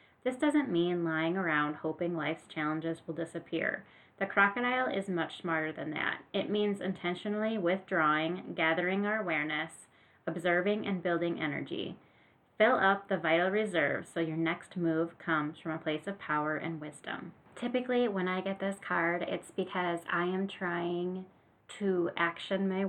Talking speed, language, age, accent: 155 wpm, English, 20-39, American